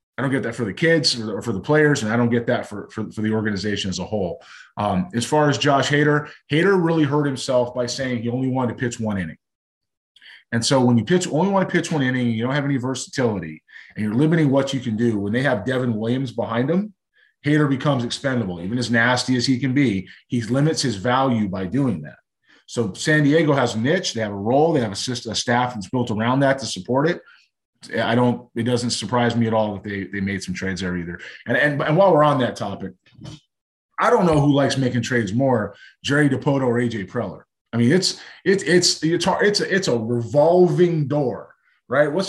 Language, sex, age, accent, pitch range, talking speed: English, male, 30-49, American, 115-150 Hz, 230 wpm